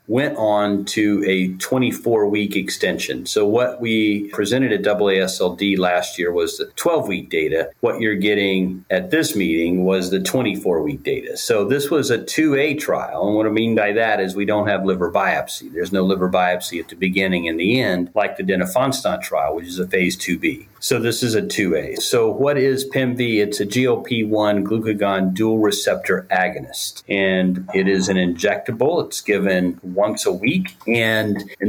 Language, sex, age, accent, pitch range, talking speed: English, male, 40-59, American, 95-125 Hz, 175 wpm